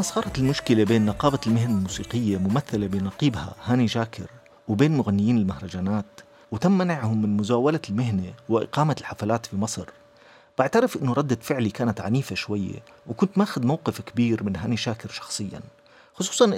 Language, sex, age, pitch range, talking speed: Arabic, male, 40-59, 105-155 Hz, 140 wpm